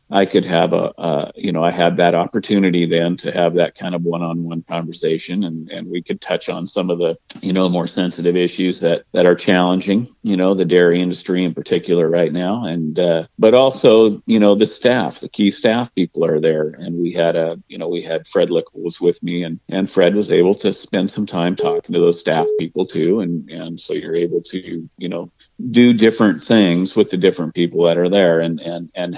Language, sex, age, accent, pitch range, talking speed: English, male, 50-69, American, 85-105 Hz, 225 wpm